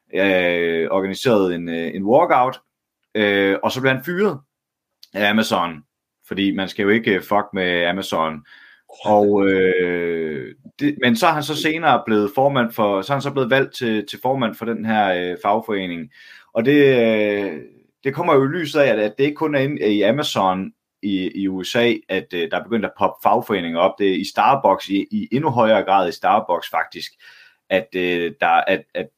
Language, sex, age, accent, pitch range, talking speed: Danish, male, 30-49, native, 90-120 Hz, 185 wpm